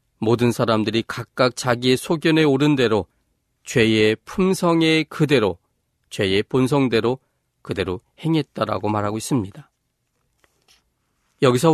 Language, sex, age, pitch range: Korean, male, 40-59, 115-150 Hz